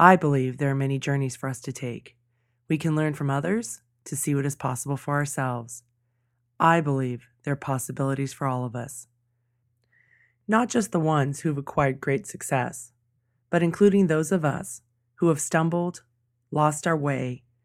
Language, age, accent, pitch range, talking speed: English, 20-39, American, 120-150 Hz, 175 wpm